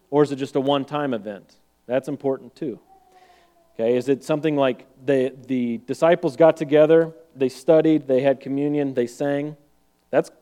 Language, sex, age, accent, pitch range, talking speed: English, male, 30-49, American, 120-155 Hz, 160 wpm